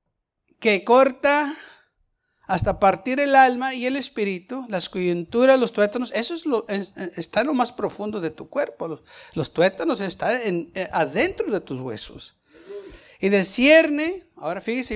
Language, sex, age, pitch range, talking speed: Spanish, male, 60-79, 195-270 Hz, 155 wpm